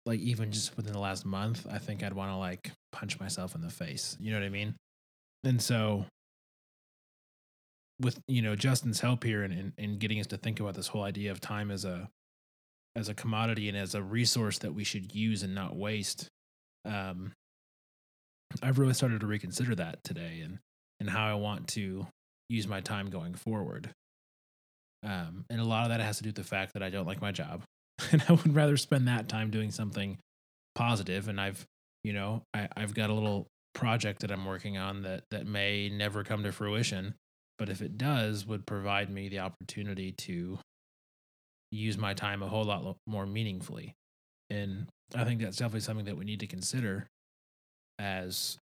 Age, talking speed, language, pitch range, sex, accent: 20-39, 195 wpm, English, 95-115 Hz, male, American